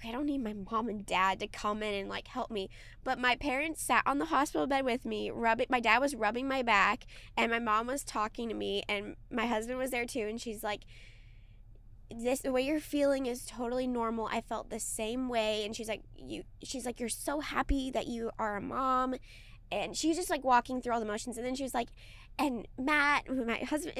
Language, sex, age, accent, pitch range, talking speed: English, female, 20-39, American, 220-275 Hz, 230 wpm